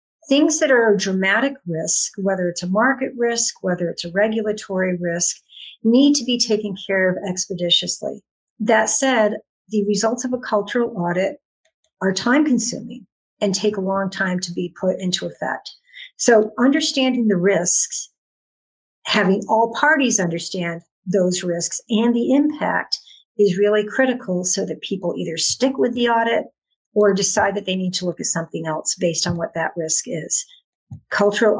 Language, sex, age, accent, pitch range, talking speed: English, female, 50-69, American, 180-230 Hz, 160 wpm